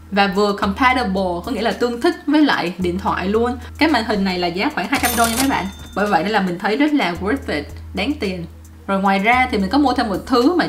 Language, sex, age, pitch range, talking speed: English, female, 20-39, 185-255 Hz, 260 wpm